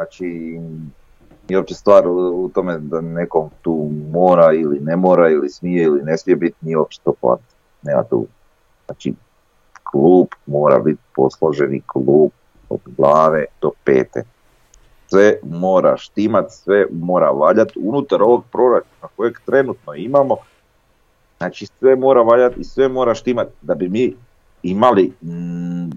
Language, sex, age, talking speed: Croatian, male, 40-59, 135 wpm